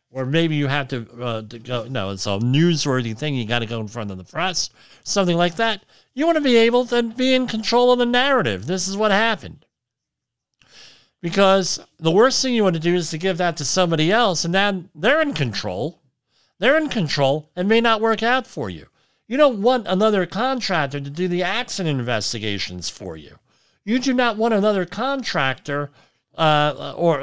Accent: American